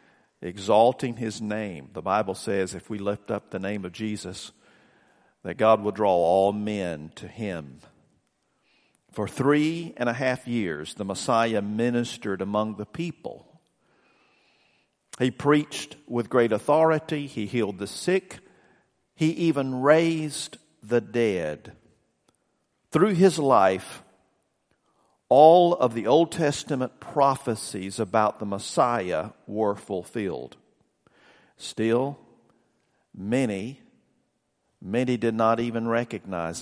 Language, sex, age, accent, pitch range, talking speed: English, male, 50-69, American, 105-130 Hz, 115 wpm